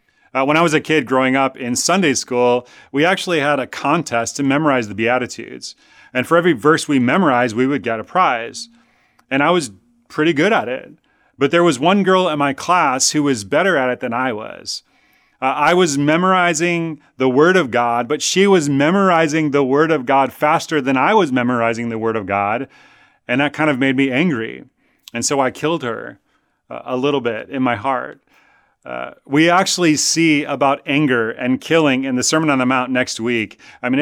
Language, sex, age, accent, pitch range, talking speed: English, male, 30-49, American, 130-170 Hz, 205 wpm